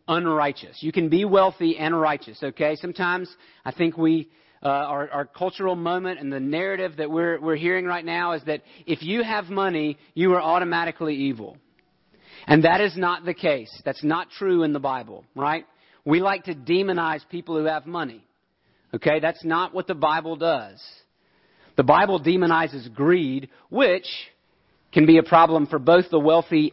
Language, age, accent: English, 40-59, American